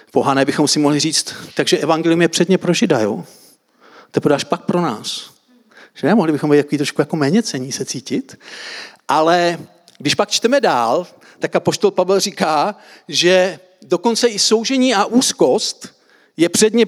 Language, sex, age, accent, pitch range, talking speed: Czech, male, 50-69, native, 155-215 Hz, 160 wpm